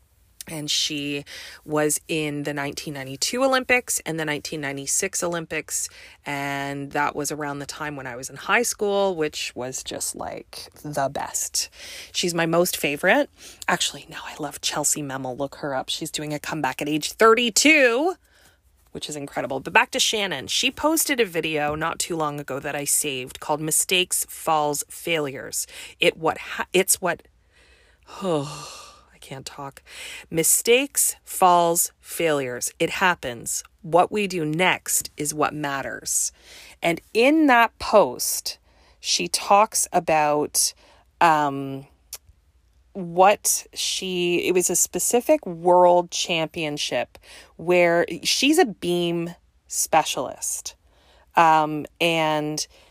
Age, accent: 30-49, American